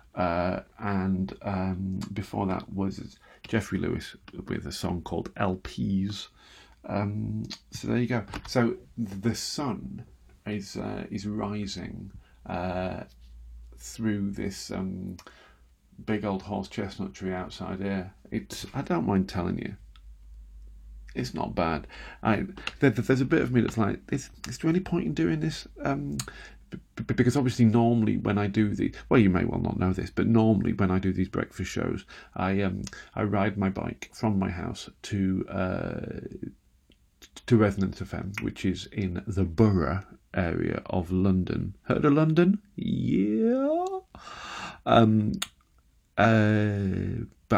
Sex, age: male, 40-59